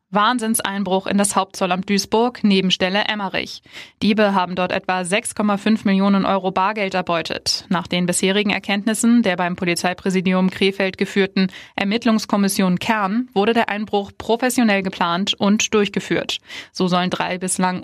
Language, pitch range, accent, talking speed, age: German, 185-220 Hz, German, 130 wpm, 20-39